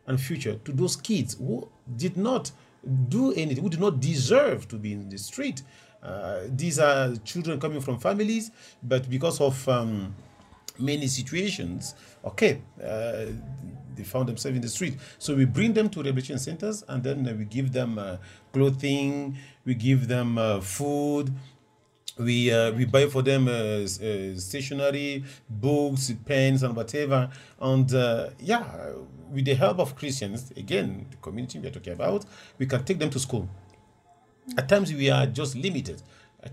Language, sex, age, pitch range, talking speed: German, male, 40-59, 115-145 Hz, 165 wpm